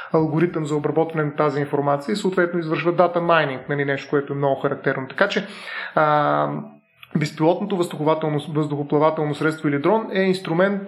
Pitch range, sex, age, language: 150-180 Hz, male, 30-49, Bulgarian